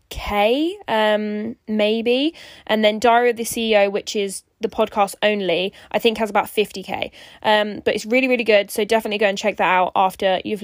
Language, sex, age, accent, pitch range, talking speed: English, female, 10-29, British, 210-245 Hz, 190 wpm